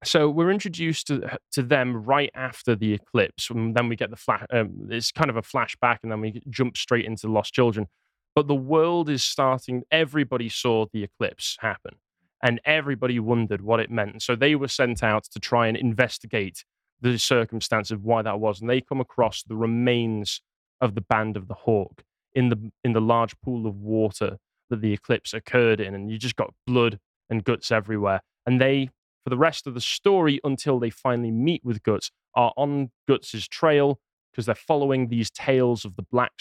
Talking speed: 200 wpm